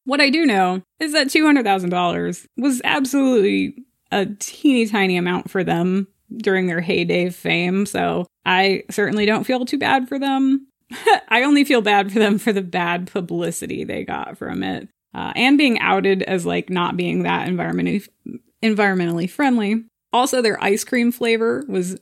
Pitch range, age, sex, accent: 185-245 Hz, 20-39, female, American